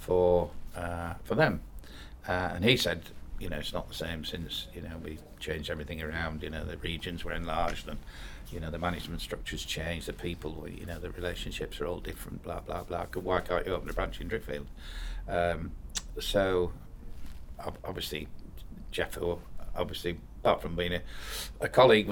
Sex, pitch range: male, 75-90 Hz